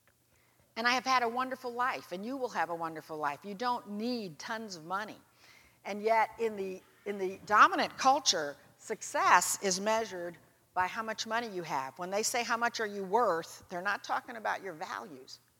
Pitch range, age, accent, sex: 170-235 Hz, 50-69, American, female